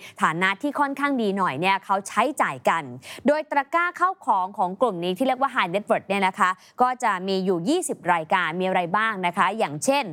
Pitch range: 185-250 Hz